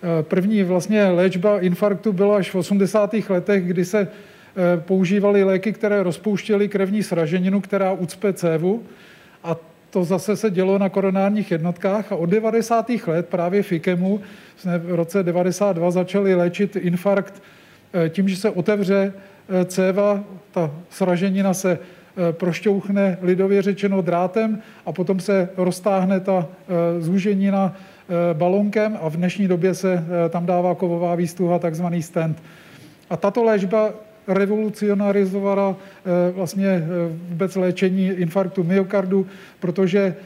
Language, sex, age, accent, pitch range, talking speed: Czech, male, 40-59, native, 180-200 Hz, 120 wpm